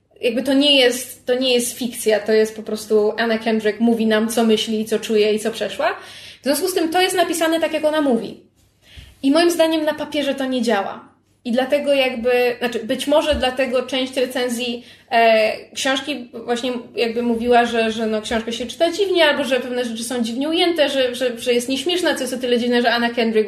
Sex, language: female, Polish